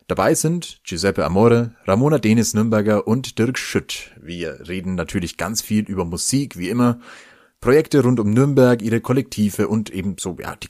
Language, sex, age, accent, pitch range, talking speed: German, male, 30-49, German, 90-125 Hz, 170 wpm